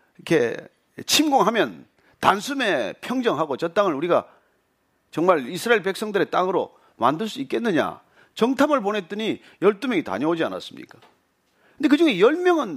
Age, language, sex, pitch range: 40-59, Korean, male, 205-300 Hz